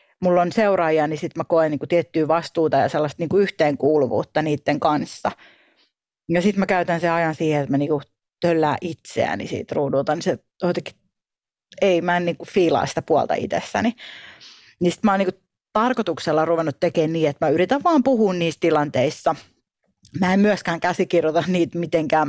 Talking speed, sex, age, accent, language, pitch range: 160 wpm, female, 30-49, native, Finnish, 155-185 Hz